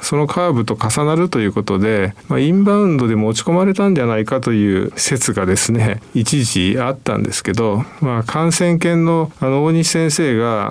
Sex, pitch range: male, 110-160 Hz